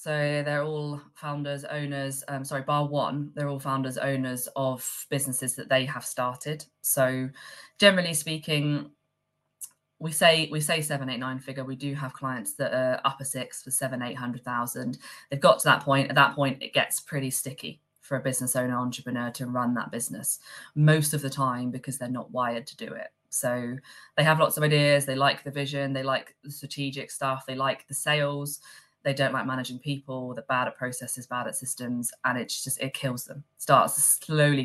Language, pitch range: English, 125-145 Hz